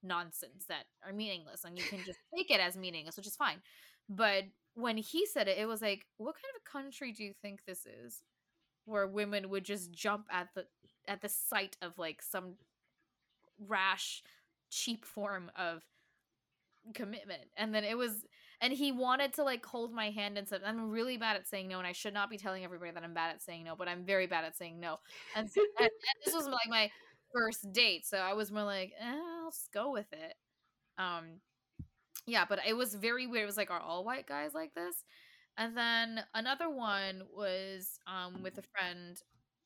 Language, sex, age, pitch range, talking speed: English, female, 20-39, 185-230 Hz, 205 wpm